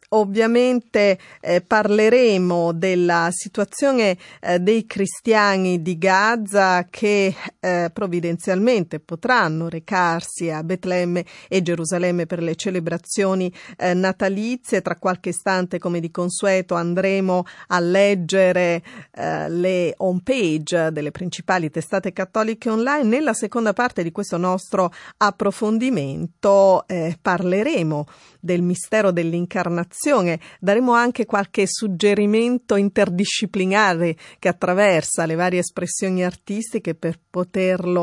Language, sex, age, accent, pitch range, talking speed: Italian, female, 30-49, native, 170-205 Hz, 105 wpm